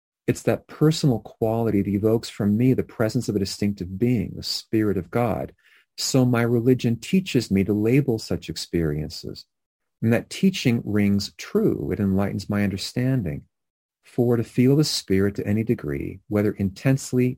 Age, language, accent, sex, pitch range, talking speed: 40-59, English, American, male, 95-120 Hz, 160 wpm